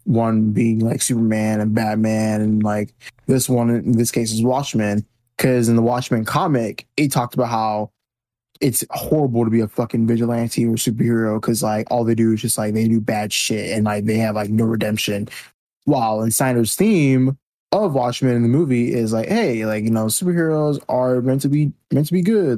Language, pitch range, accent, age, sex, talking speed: English, 110-130 Hz, American, 20-39, male, 200 wpm